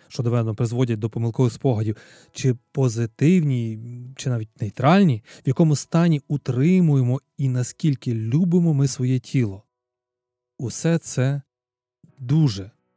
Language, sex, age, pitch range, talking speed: Ukrainian, male, 30-49, 115-155 Hz, 110 wpm